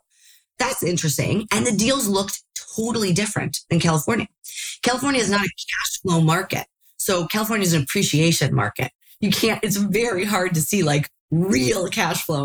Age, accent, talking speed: 30-49, American, 165 wpm